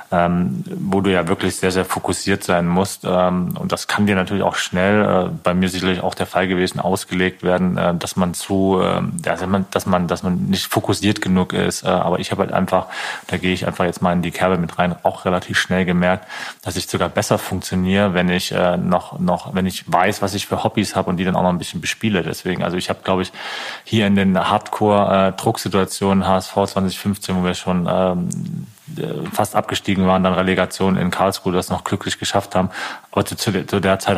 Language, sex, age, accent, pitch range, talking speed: German, male, 30-49, German, 95-105 Hz, 220 wpm